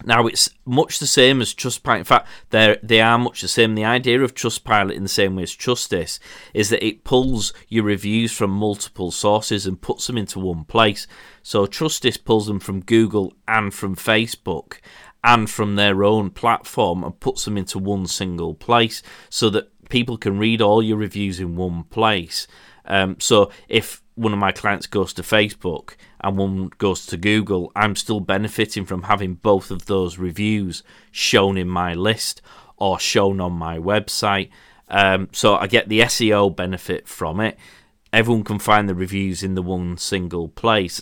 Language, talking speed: English, 180 wpm